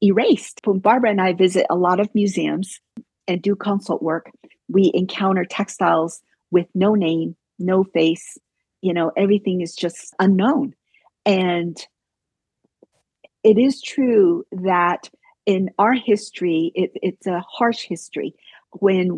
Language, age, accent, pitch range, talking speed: English, 50-69, American, 175-205 Hz, 130 wpm